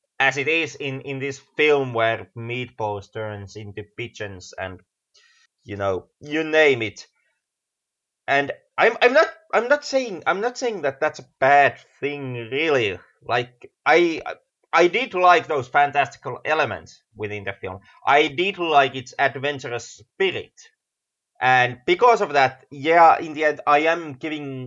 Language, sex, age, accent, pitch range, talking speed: English, male, 30-49, Finnish, 120-165 Hz, 150 wpm